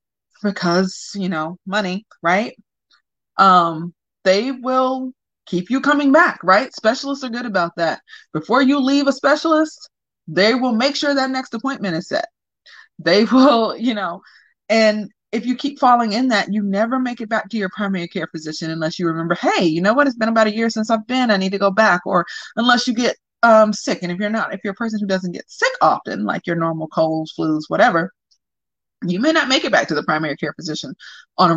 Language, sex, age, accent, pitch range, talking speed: English, female, 30-49, American, 170-245 Hz, 210 wpm